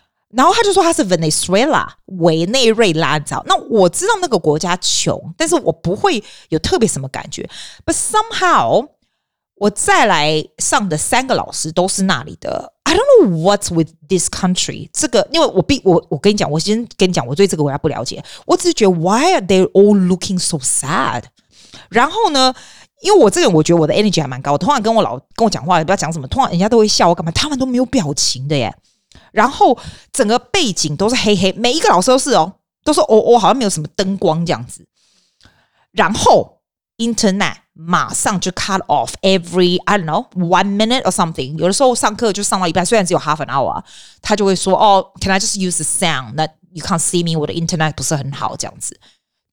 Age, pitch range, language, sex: 30-49, 165-230 Hz, Chinese, female